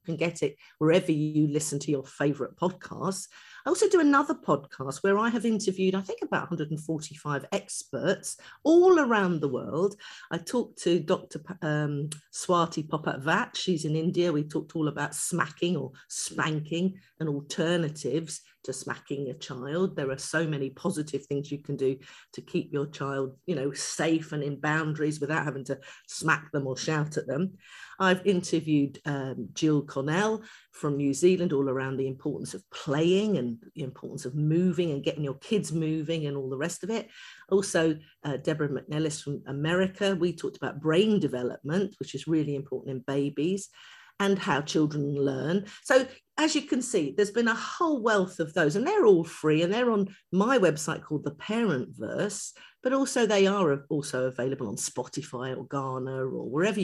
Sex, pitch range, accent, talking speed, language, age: female, 140-190 Hz, British, 175 wpm, English, 50-69